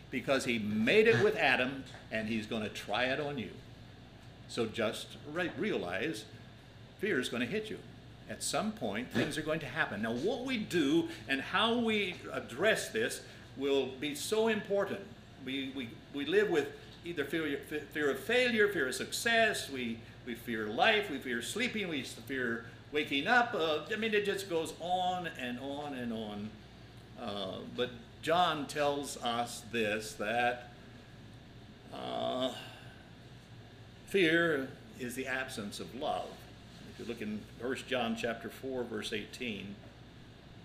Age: 60-79